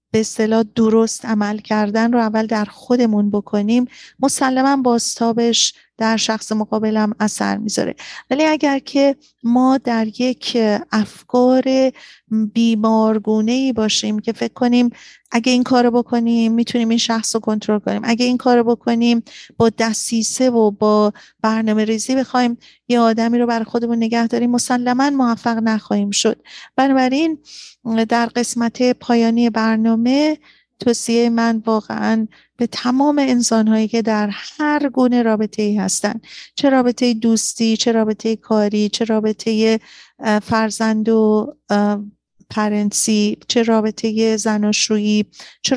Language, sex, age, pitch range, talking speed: Persian, female, 40-59, 215-245 Hz, 120 wpm